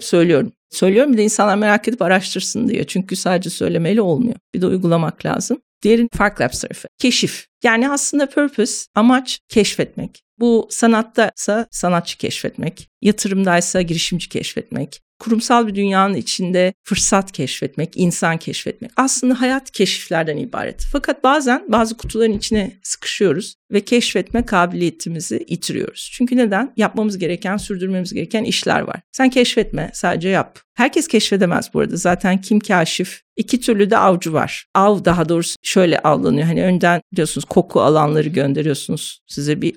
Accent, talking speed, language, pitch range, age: native, 140 wpm, Turkish, 175-235 Hz, 50-69